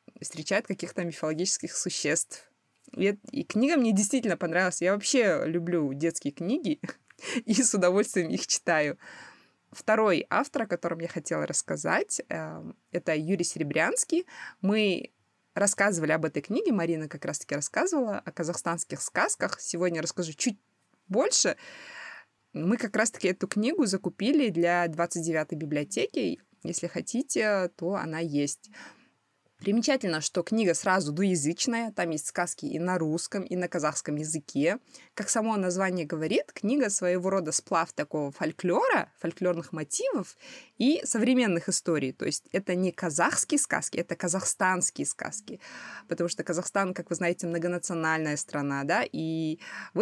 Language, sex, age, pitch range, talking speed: Russian, female, 20-39, 170-225 Hz, 130 wpm